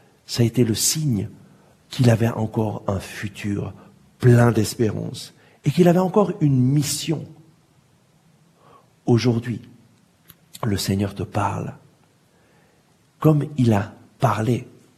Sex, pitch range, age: male, 105-155 Hz, 60-79